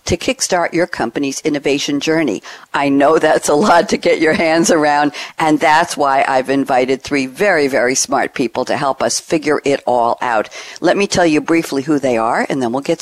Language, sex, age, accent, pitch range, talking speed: English, female, 60-79, American, 135-170 Hz, 205 wpm